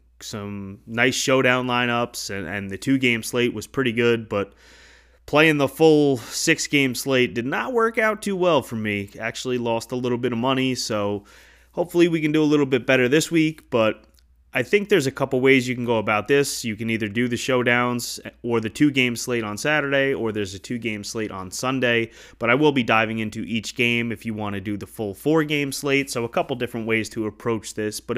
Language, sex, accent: English, male, American